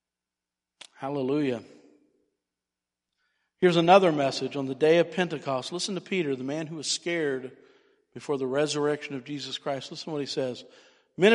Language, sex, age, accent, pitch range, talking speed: English, male, 50-69, American, 130-190 Hz, 155 wpm